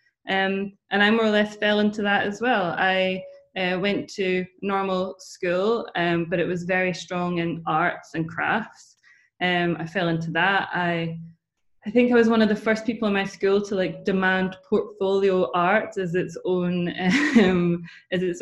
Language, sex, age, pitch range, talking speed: English, female, 20-39, 175-200 Hz, 180 wpm